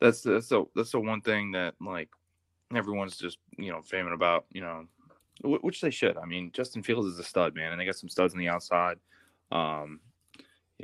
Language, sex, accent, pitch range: English, male, American, 85-95 Hz